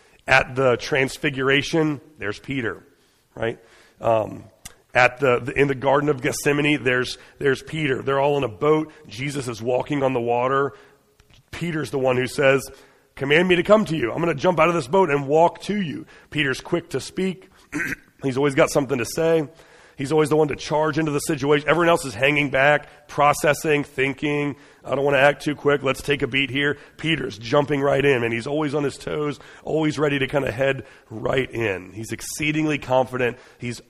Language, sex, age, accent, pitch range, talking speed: English, male, 40-59, American, 125-150 Hz, 200 wpm